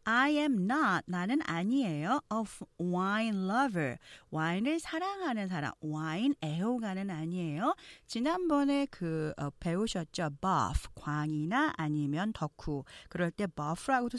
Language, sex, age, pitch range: Korean, female, 40-59, 165-275 Hz